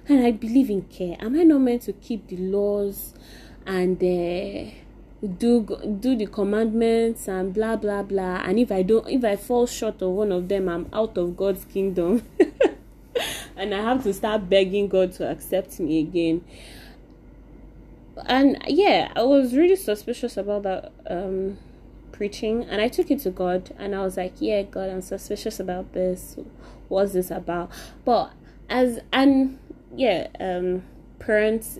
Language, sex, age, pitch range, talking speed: English, female, 20-39, 175-220 Hz, 160 wpm